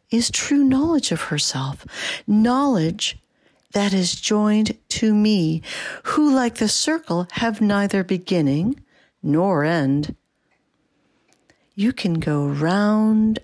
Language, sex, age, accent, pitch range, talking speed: English, female, 50-69, American, 180-225 Hz, 105 wpm